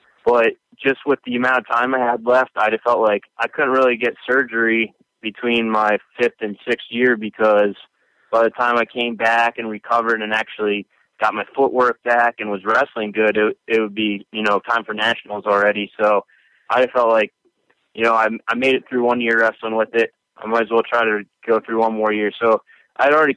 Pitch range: 110-120 Hz